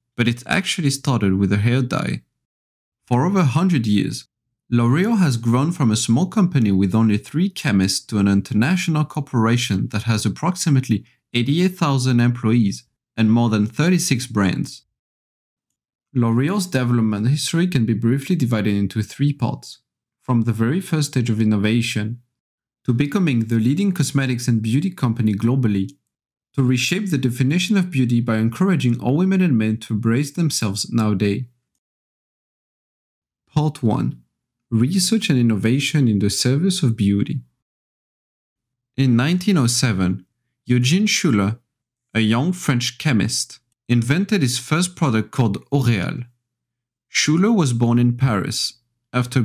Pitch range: 115-145 Hz